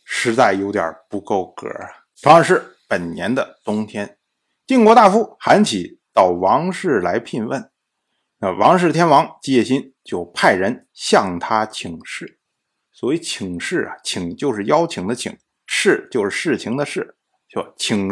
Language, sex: Chinese, male